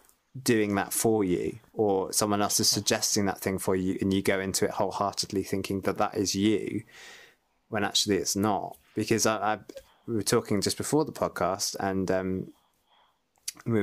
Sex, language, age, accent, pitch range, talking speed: male, English, 20-39, British, 95-115 Hz, 180 wpm